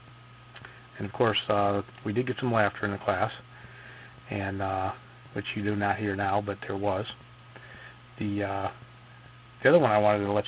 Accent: American